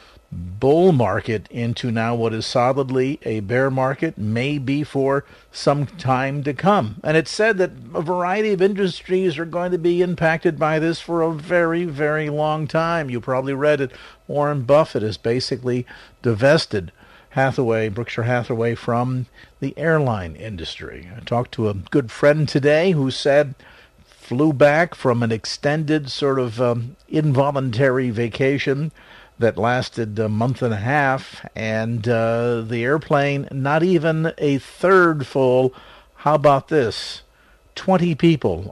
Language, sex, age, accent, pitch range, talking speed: English, male, 50-69, American, 120-150 Hz, 145 wpm